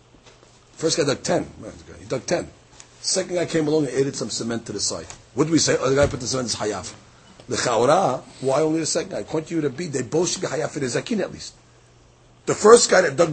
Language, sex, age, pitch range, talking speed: English, male, 40-59, 140-210 Hz, 260 wpm